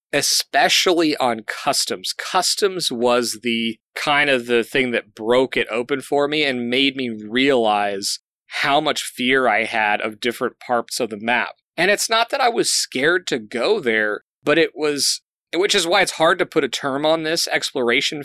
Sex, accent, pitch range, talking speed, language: male, American, 115-145 Hz, 185 wpm, English